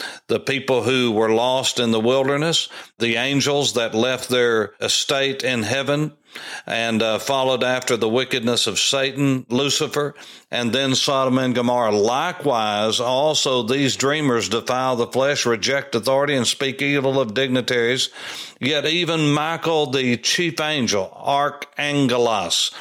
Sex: male